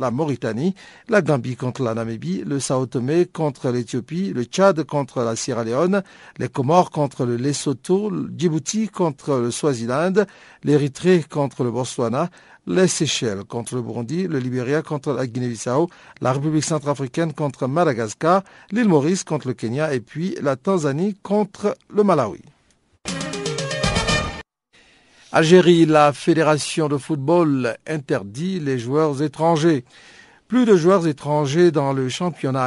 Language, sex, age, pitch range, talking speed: French, male, 50-69, 125-170 Hz, 135 wpm